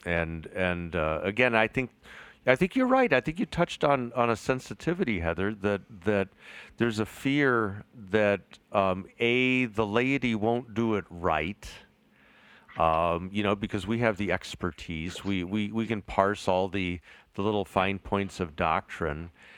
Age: 50-69